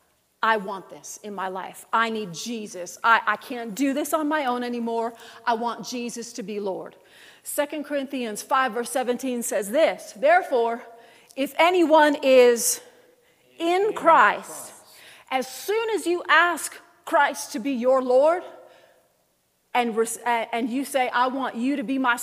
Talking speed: 155 wpm